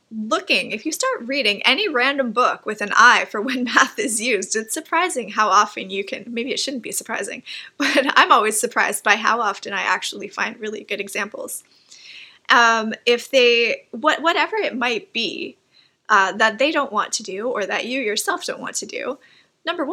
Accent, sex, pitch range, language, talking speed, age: American, female, 210-290 Hz, English, 190 wpm, 20-39